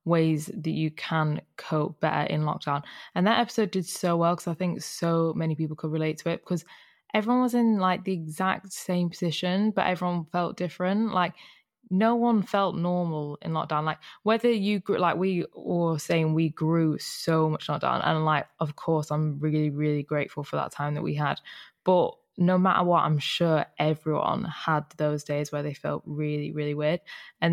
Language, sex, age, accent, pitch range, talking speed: English, female, 10-29, British, 155-180 Hz, 190 wpm